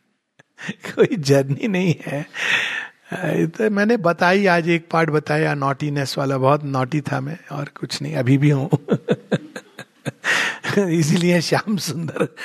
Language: Hindi